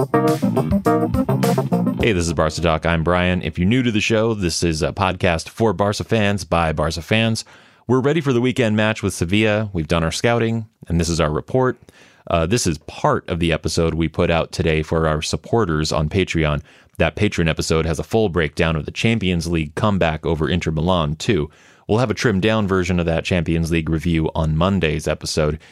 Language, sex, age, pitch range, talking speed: English, male, 30-49, 80-100 Hz, 200 wpm